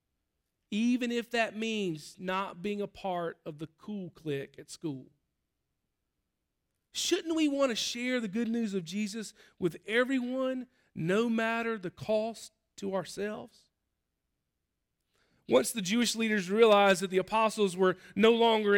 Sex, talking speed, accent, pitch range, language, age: male, 135 wpm, American, 175-225 Hz, English, 40-59